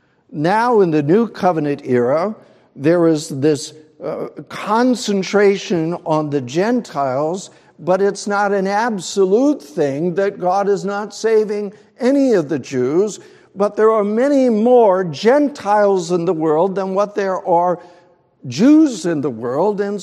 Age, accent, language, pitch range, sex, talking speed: 60-79, American, English, 155-205 Hz, male, 140 wpm